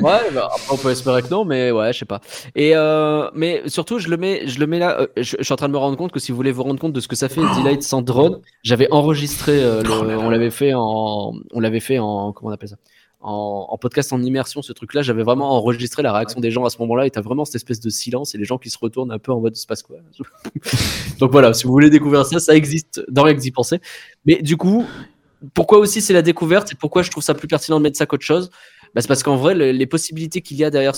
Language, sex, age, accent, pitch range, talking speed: French, male, 20-39, French, 125-155 Hz, 280 wpm